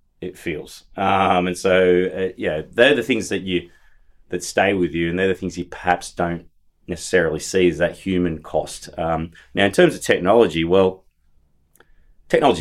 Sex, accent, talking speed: male, Australian, 175 wpm